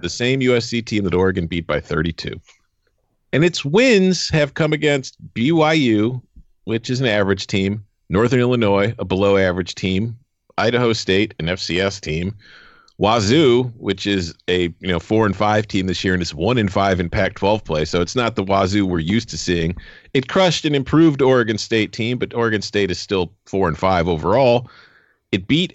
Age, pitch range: 40-59, 100-140 Hz